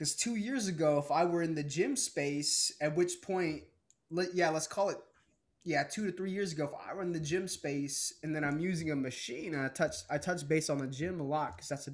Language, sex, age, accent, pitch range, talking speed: English, male, 20-39, American, 145-195 Hz, 255 wpm